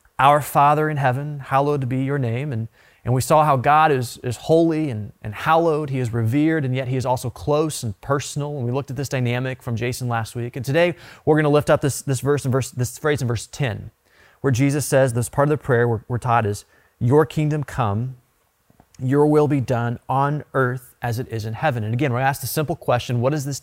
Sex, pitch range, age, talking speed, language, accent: male, 120-155 Hz, 30-49, 240 wpm, English, American